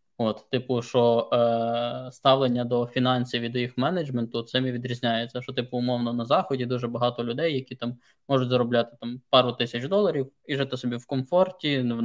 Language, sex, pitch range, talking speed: Ukrainian, male, 120-130 Hz, 175 wpm